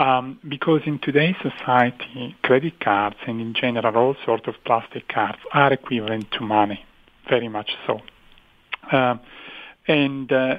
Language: English